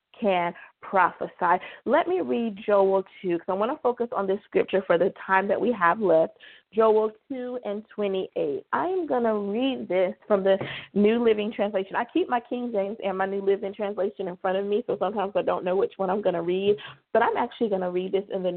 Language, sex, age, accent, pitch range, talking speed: English, female, 30-49, American, 190-245 Hz, 230 wpm